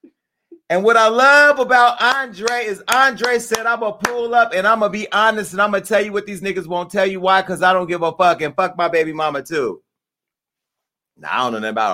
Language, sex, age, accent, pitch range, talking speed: English, male, 30-49, American, 165-235 Hz, 255 wpm